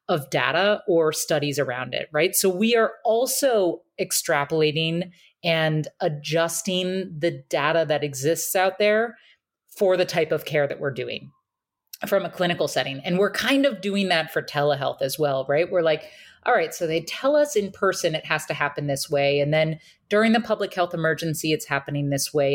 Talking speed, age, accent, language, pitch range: 185 wpm, 30-49, American, English, 150-195 Hz